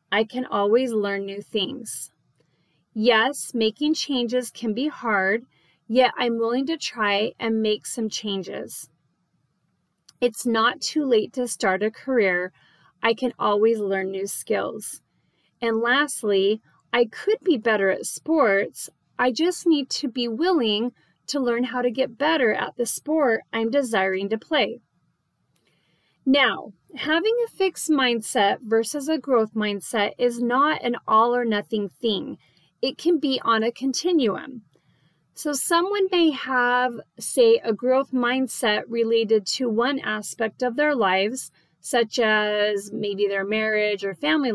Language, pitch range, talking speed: English, 210-275 Hz, 145 wpm